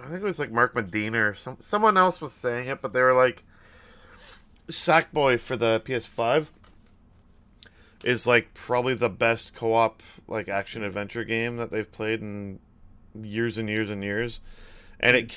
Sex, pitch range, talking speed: male, 110-150 Hz, 165 wpm